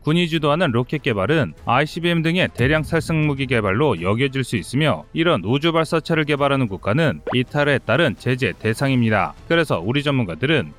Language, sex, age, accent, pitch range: Korean, male, 30-49, native, 120-155 Hz